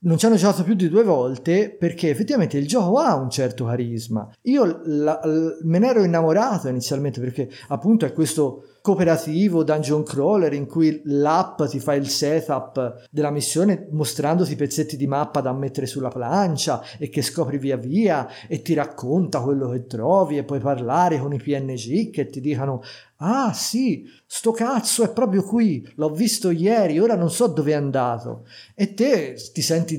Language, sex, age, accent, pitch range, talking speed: Italian, male, 50-69, native, 135-185 Hz, 175 wpm